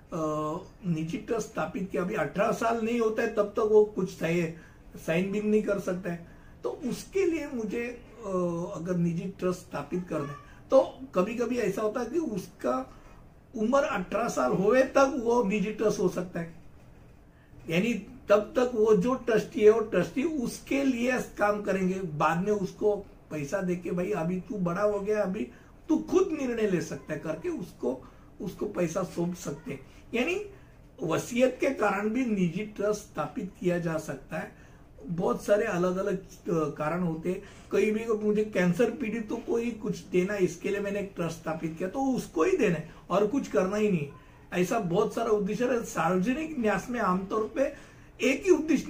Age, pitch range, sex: 60-79, 180-235 Hz, male